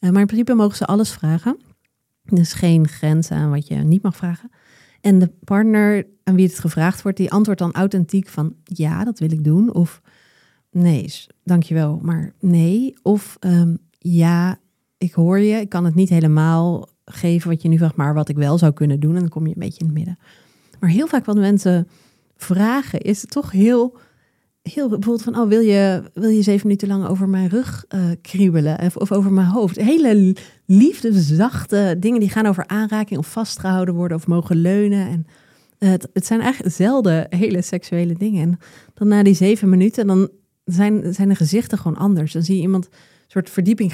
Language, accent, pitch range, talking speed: Dutch, Dutch, 170-205 Hz, 200 wpm